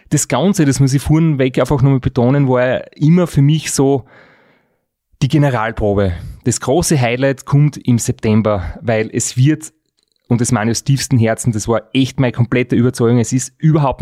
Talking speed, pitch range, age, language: 180 wpm, 110-135 Hz, 30-49, German